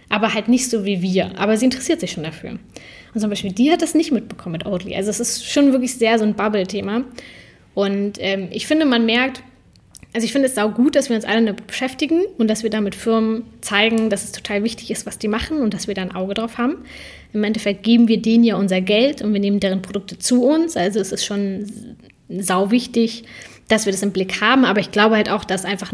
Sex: female